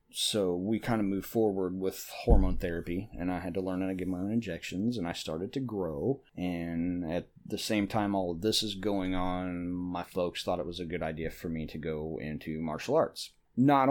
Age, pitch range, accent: 30-49, 90-110 Hz, American